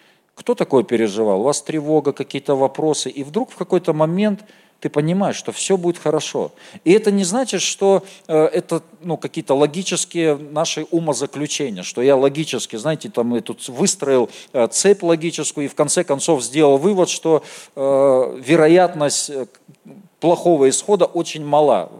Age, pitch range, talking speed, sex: 40-59, 145-185 Hz, 140 wpm, male